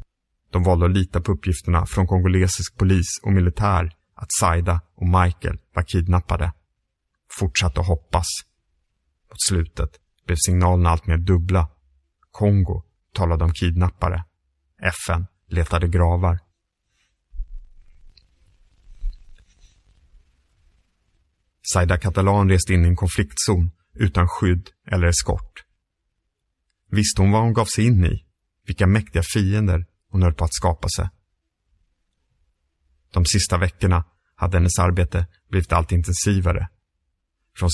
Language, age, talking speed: English, 30-49, 115 wpm